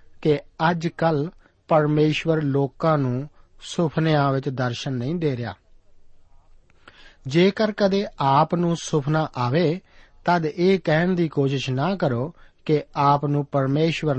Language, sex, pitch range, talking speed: Punjabi, male, 120-165 Hz, 125 wpm